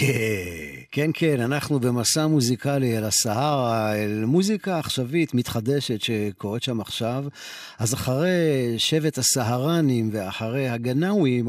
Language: Hebrew